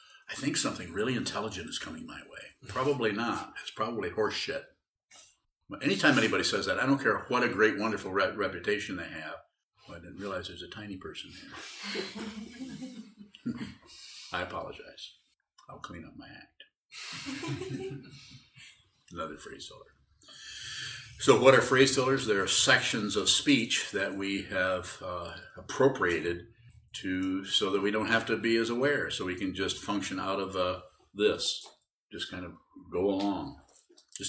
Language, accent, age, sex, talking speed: English, American, 50-69, male, 155 wpm